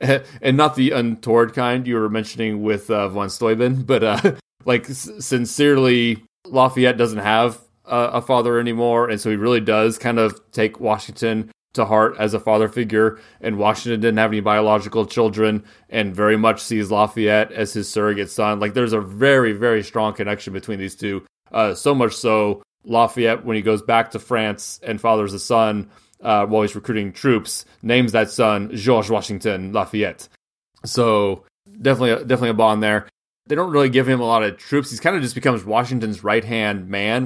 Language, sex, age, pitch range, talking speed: English, male, 20-39, 105-120 Hz, 185 wpm